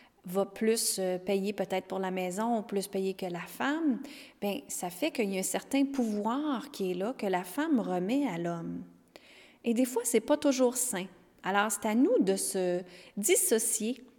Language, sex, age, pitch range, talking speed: French, female, 30-49, 190-250 Hz, 185 wpm